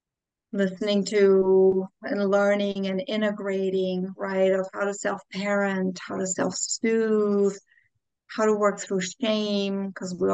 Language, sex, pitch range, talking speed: English, female, 185-210 Hz, 120 wpm